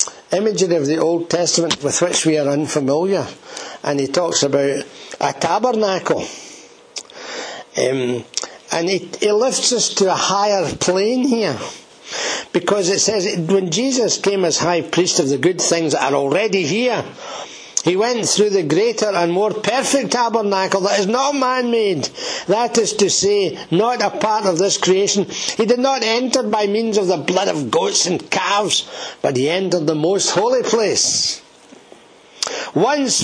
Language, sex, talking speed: English, male, 160 wpm